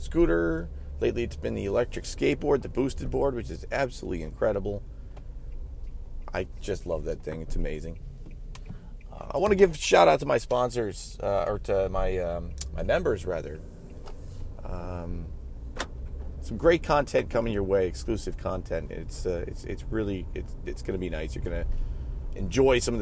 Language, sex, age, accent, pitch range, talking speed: English, male, 30-49, American, 70-100 Hz, 170 wpm